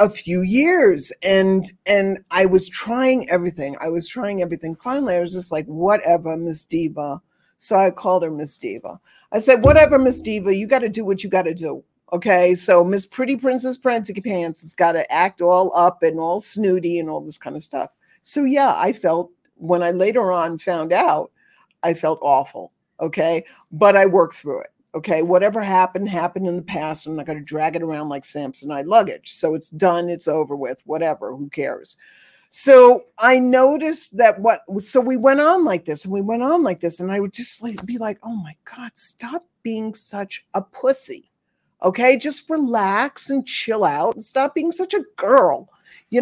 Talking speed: 195 wpm